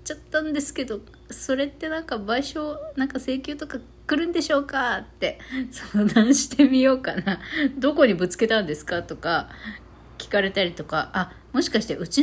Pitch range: 180-275 Hz